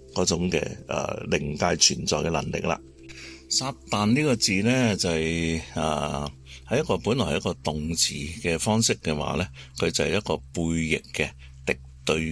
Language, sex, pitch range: Chinese, male, 65-95 Hz